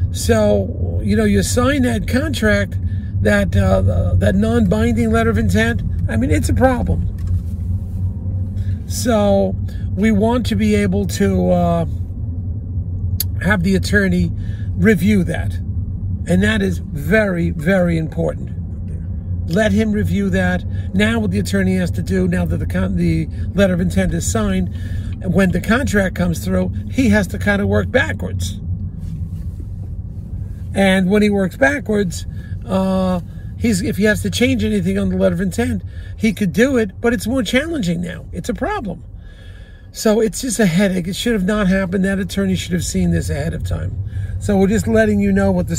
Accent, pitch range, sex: American, 90-105 Hz, male